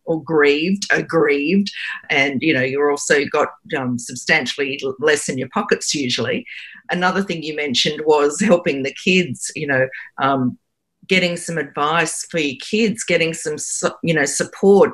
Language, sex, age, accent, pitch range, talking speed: English, female, 50-69, Australian, 145-180 Hz, 155 wpm